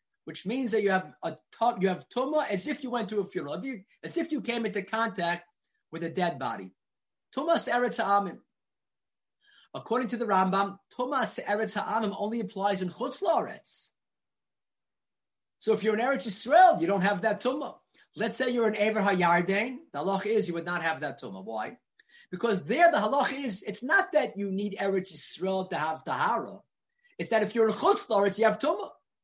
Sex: male